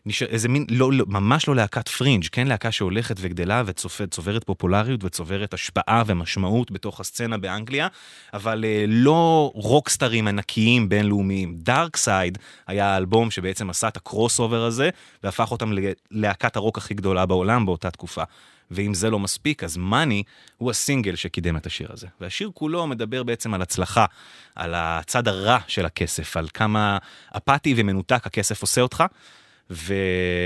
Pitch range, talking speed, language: 95-115 Hz, 140 wpm, English